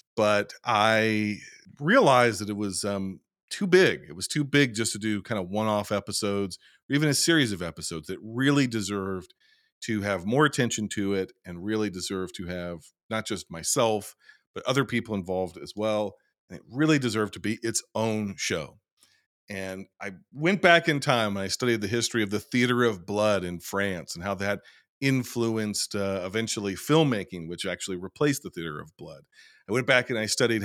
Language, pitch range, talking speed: English, 100-125 Hz, 190 wpm